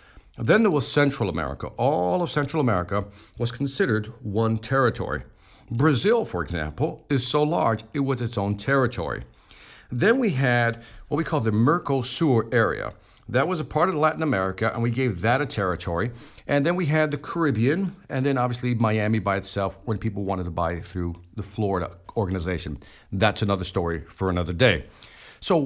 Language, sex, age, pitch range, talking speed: English, male, 50-69, 100-140 Hz, 175 wpm